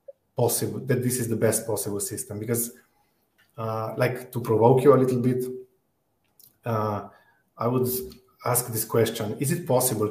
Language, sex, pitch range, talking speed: English, male, 105-120 Hz, 155 wpm